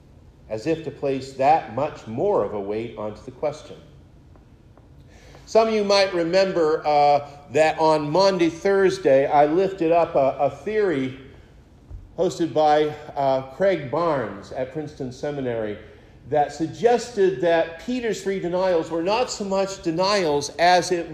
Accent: American